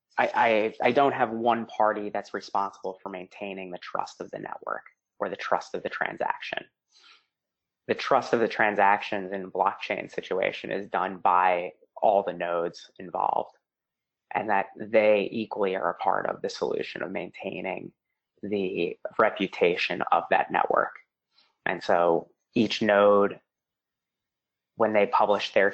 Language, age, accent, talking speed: English, 20-39, American, 140 wpm